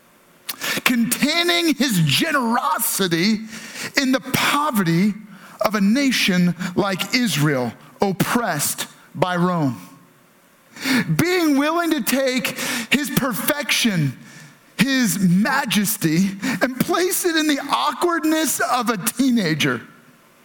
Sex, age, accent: male, 40-59, American